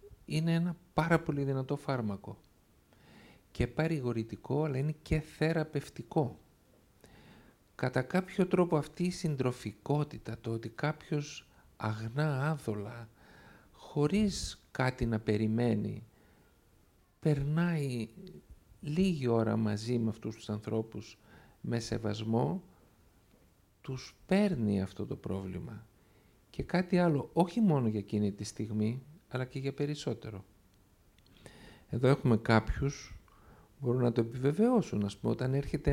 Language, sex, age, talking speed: Greek, male, 50-69, 110 wpm